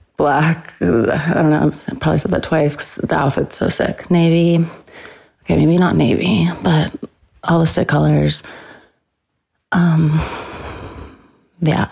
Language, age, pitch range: English, 30-49, 145-170 Hz